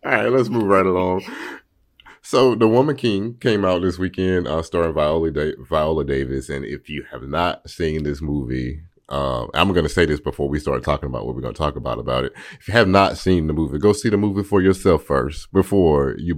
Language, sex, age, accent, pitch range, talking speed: English, male, 30-49, American, 70-85 Hz, 230 wpm